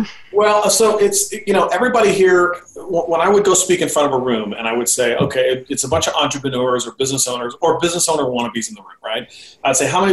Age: 40-59